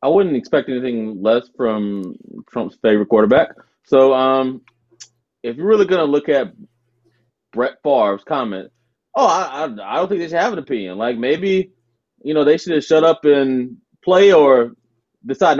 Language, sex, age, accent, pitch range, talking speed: English, male, 30-49, American, 120-195 Hz, 170 wpm